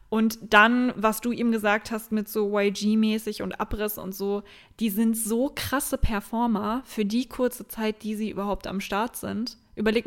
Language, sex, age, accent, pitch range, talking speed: German, female, 20-39, German, 200-235 Hz, 180 wpm